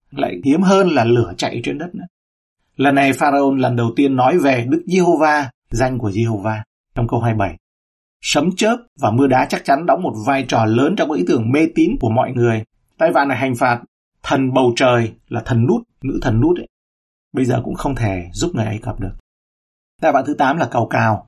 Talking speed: 230 wpm